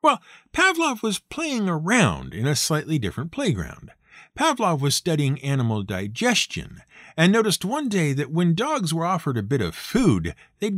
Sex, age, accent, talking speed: male, 50-69, American, 160 wpm